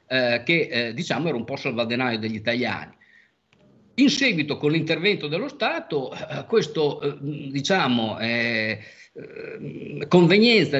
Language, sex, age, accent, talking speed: Italian, male, 50-69, native, 120 wpm